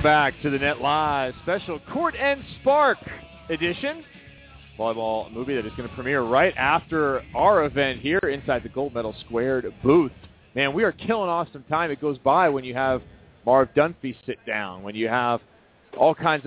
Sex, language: male, English